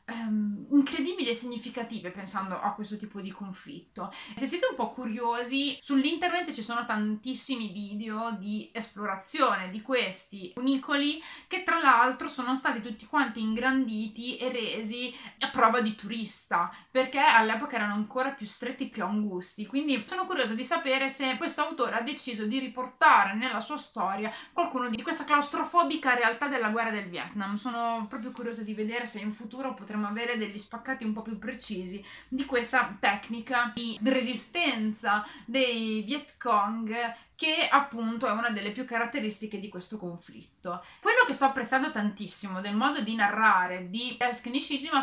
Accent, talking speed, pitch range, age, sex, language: native, 155 wpm, 215-270 Hz, 30-49, female, Italian